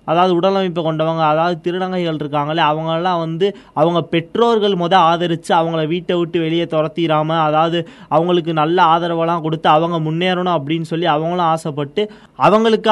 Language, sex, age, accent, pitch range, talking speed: Tamil, male, 20-39, native, 155-180 Hz, 140 wpm